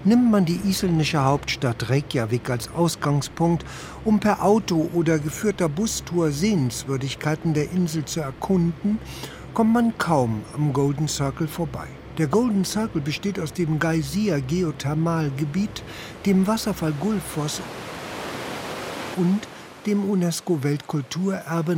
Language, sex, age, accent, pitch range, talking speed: German, male, 60-79, German, 145-185 Hz, 115 wpm